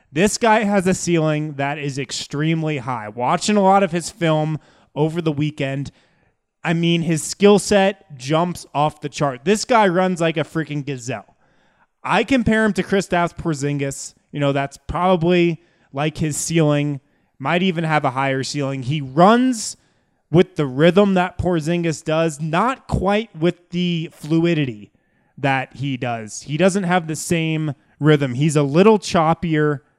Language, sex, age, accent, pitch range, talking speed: English, male, 20-39, American, 145-185 Hz, 160 wpm